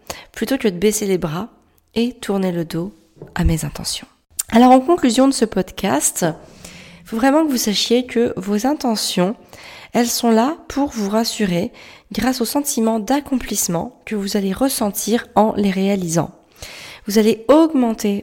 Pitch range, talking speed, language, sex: 185-235 Hz, 160 wpm, French, female